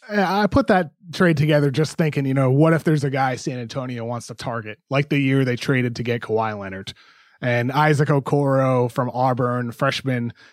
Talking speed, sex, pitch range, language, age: 195 wpm, male, 130-160 Hz, English, 20-39